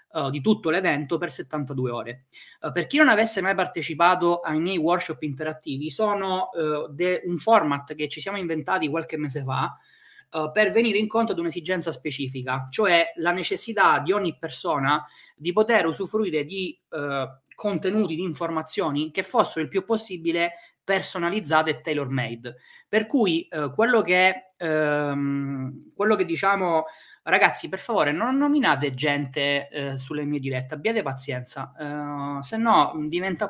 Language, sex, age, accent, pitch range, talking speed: Italian, male, 20-39, native, 150-195 Hz, 140 wpm